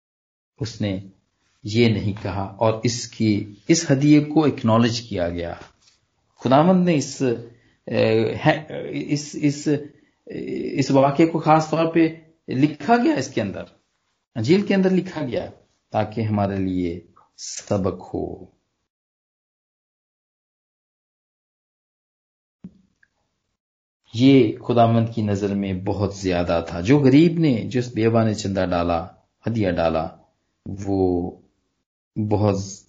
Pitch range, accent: 100-135 Hz, native